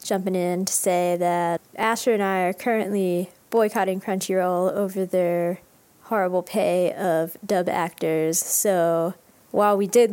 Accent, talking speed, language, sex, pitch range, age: American, 135 wpm, English, female, 170-205 Hz, 20-39